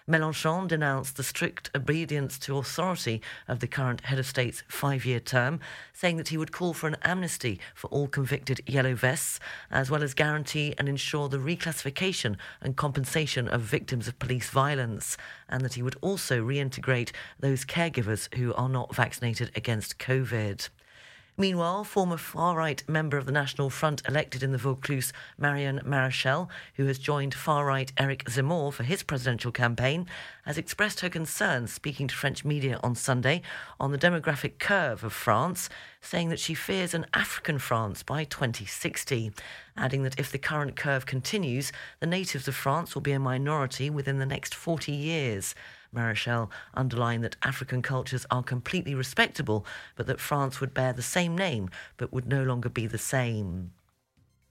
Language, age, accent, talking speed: English, 40-59, British, 165 wpm